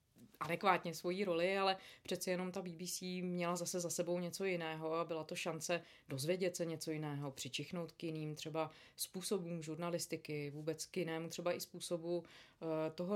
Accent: native